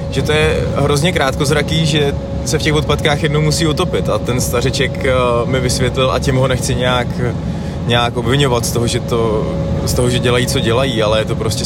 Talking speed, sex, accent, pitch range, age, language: 190 wpm, male, native, 105-135 Hz, 20-39, Czech